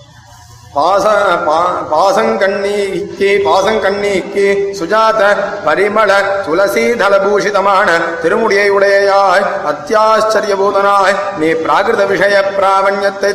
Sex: male